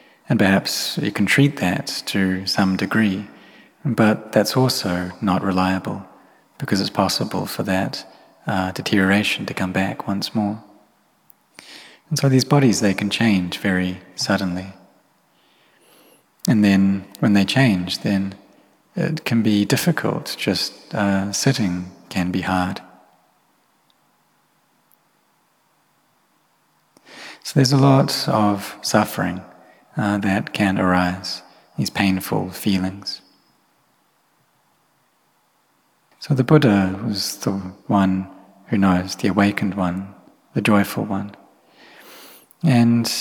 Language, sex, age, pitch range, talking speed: English, male, 30-49, 95-110 Hz, 110 wpm